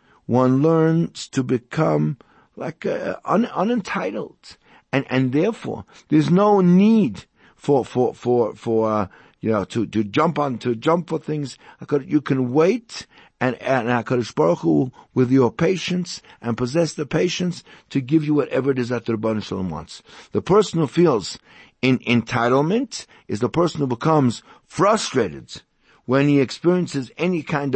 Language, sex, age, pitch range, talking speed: English, male, 60-79, 130-185 Hz, 155 wpm